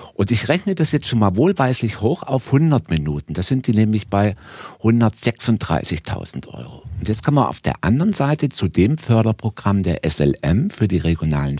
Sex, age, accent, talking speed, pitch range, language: male, 60-79, German, 180 wpm, 90-130 Hz, German